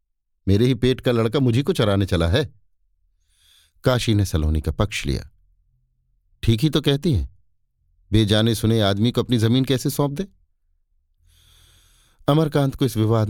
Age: 50-69